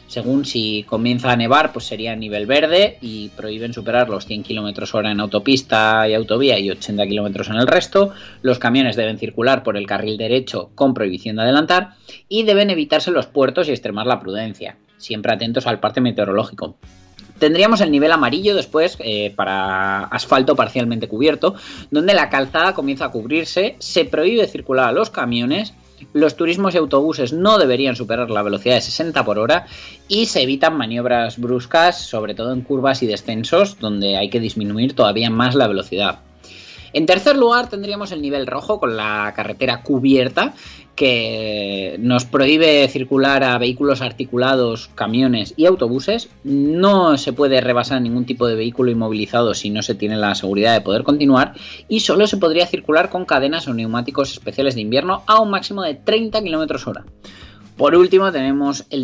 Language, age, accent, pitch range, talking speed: Spanish, 20-39, Spanish, 110-155 Hz, 170 wpm